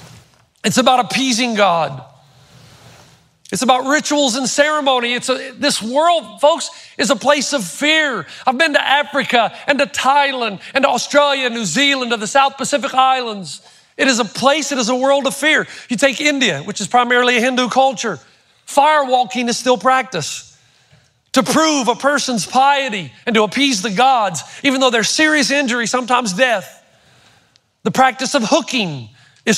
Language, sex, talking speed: English, male, 165 wpm